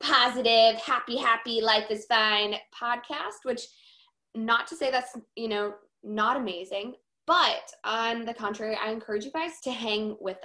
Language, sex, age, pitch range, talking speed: English, female, 20-39, 195-235 Hz, 155 wpm